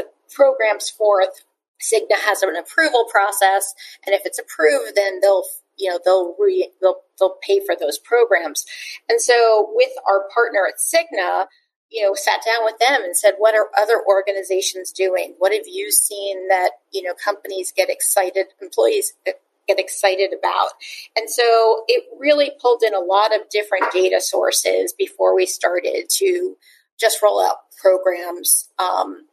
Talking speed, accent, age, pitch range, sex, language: 160 wpm, American, 30-49, 195-285 Hz, female, English